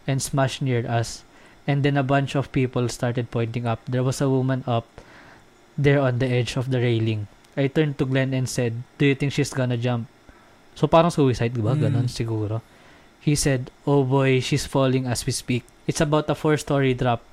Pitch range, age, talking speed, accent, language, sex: 120-140 Hz, 20-39, 195 wpm, native, Filipino, male